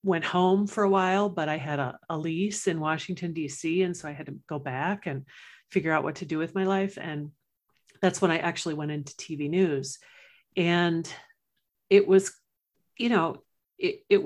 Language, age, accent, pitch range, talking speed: English, 50-69, American, 160-195 Hz, 195 wpm